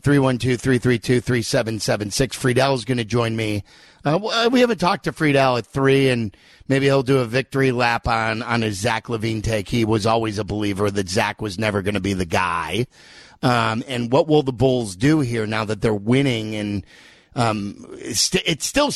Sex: male